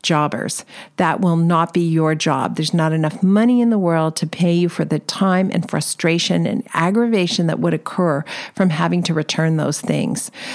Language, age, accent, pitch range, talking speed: English, 50-69, American, 160-200 Hz, 190 wpm